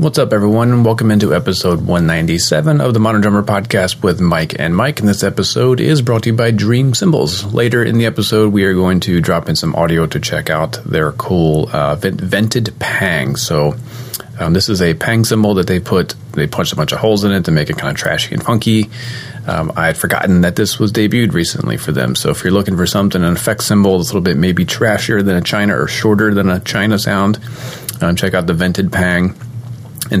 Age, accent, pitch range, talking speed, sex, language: 30-49, American, 90-115 Hz, 225 wpm, male, English